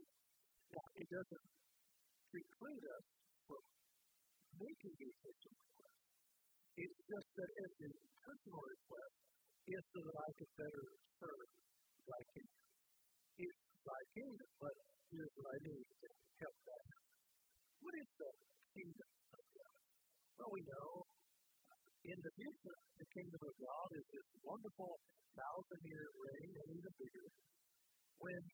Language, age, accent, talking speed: English, 50-69, American, 130 wpm